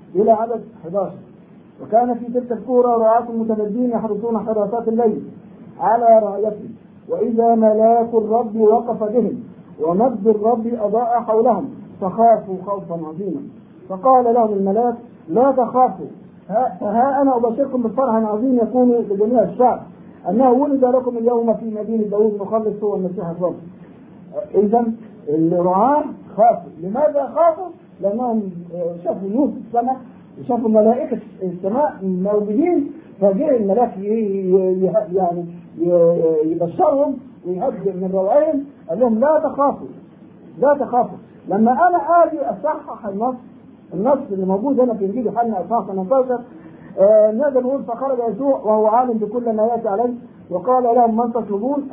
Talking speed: 120 wpm